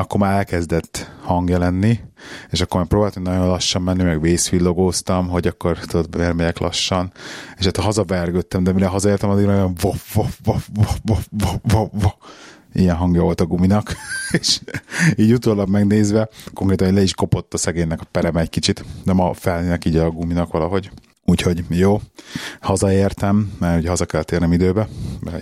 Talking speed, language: 150 wpm, Hungarian